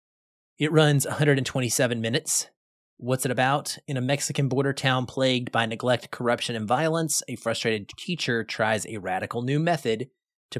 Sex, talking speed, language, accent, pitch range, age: male, 155 wpm, English, American, 110-145 Hz, 20-39